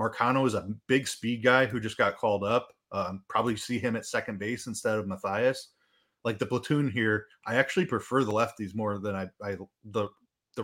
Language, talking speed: English, 205 wpm